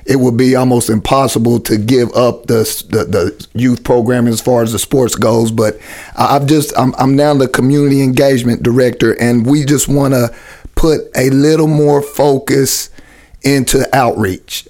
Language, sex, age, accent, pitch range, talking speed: English, male, 40-59, American, 115-135 Hz, 165 wpm